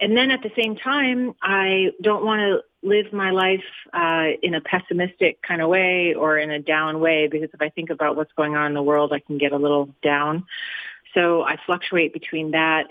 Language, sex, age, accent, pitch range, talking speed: English, female, 30-49, American, 150-175 Hz, 220 wpm